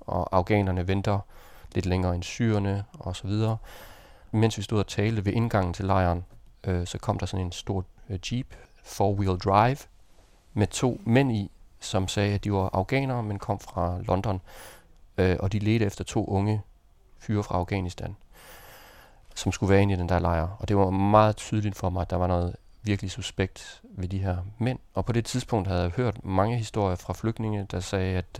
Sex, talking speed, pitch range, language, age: male, 195 wpm, 95-105 Hz, Danish, 30-49